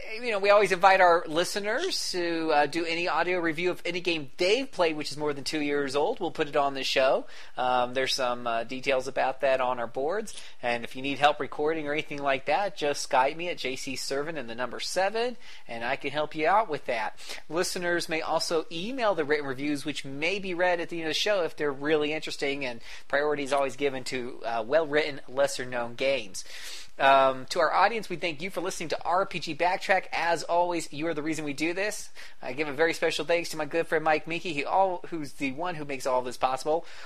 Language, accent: English, American